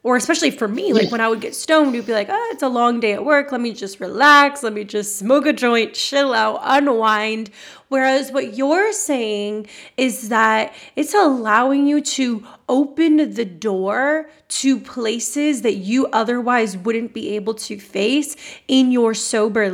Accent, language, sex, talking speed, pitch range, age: American, English, female, 180 wpm, 215-270 Hz, 20-39